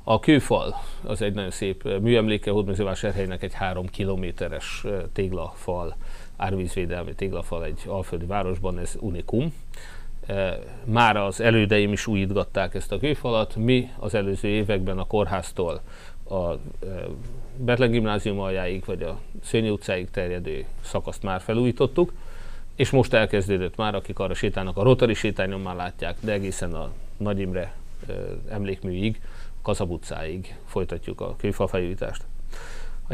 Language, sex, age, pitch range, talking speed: Hungarian, male, 30-49, 90-105 Hz, 125 wpm